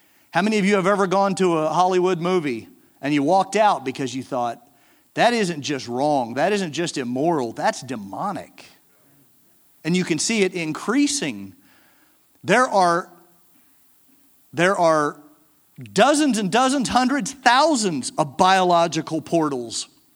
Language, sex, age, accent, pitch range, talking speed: English, male, 50-69, American, 165-255 Hz, 135 wpm